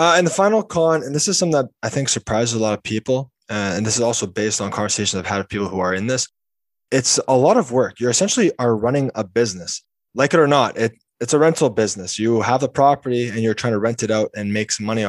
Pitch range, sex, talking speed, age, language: 105-130 Hz, male, 265 wpm, 20-39, English